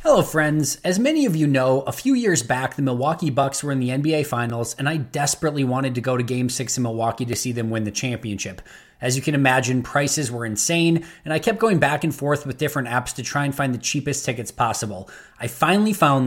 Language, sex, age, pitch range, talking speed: English, male, 20-39, 125-155 Hz, 235 wpm